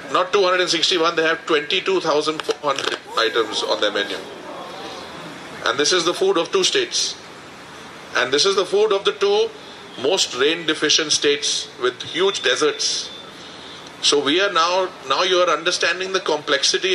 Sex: male